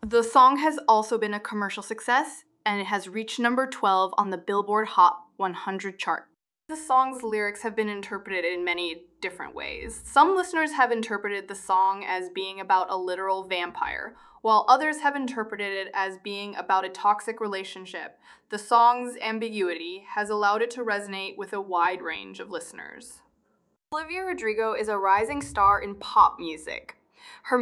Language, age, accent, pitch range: English, 20-39, American, 190-250 Hz